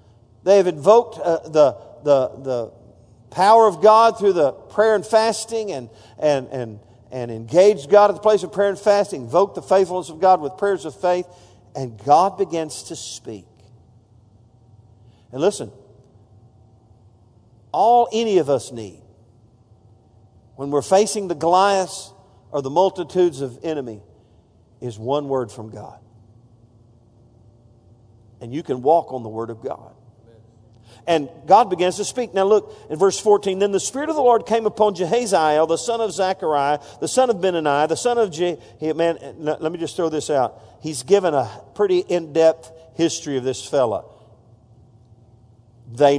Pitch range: 115-185 Hz